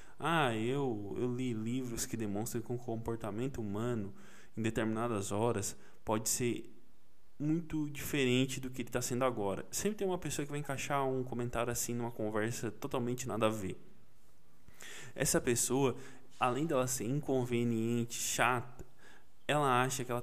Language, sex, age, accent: Portuguese, male, 20-39, Brazilian